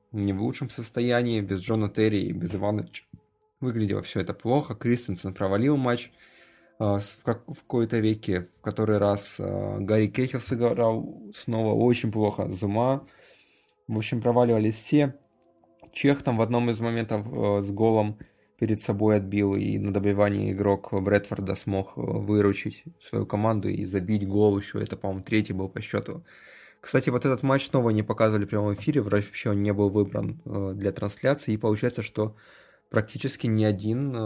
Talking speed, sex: 165 wpm, male